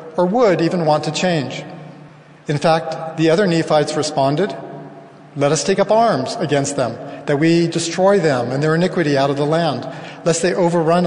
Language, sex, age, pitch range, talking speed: English, male, 40-59, 145-175 Hz, 180 wpm